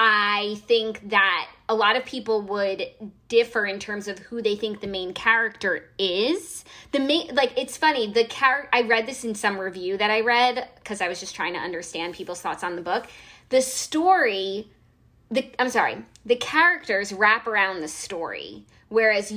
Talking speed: 185 wpm